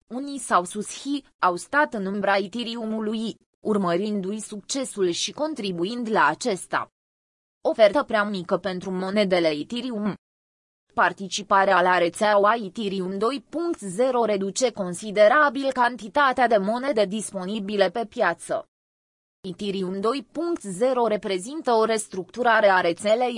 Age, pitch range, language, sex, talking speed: 20-39, 185-235 Hz, Romanian, female, 105 wpm